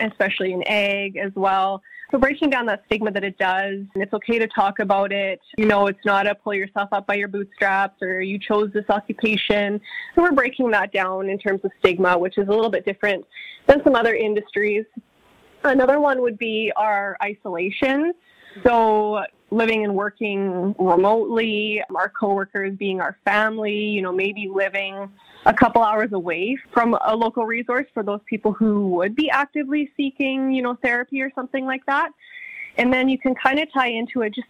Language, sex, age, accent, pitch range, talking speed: English, female, 20-39, American, 195-230 Hz, 190 wpm